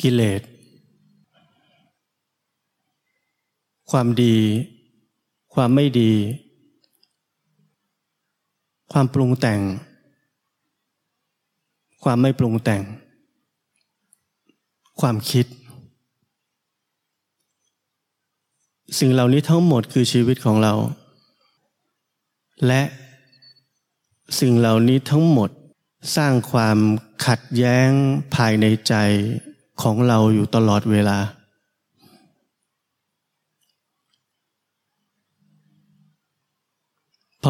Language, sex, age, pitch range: Thai, male, 20-39, 110-140 Hz